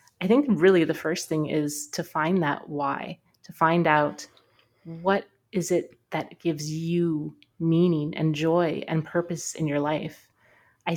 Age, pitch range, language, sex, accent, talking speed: 30-49, 145-165 Hz, English, female, American, 160 wpm